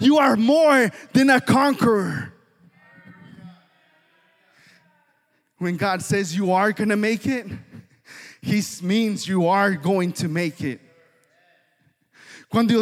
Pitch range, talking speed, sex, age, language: 150-230 Hz, 110 wpm, male, 30-49, English